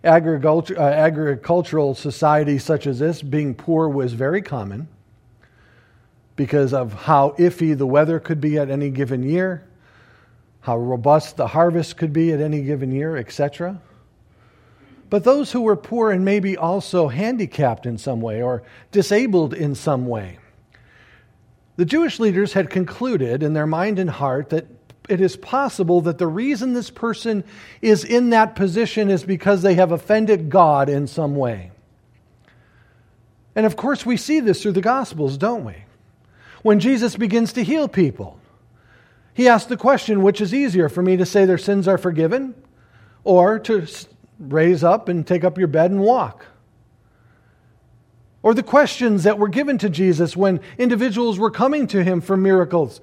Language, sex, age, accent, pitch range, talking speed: English, male, 50-69, American, 125-200 Hz, 160 wpm